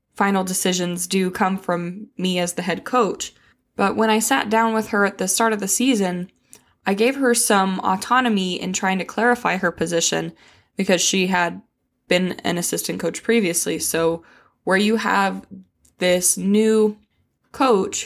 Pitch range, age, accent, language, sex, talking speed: 175-210 Hz, 20-39, American, English, female, 165 wpm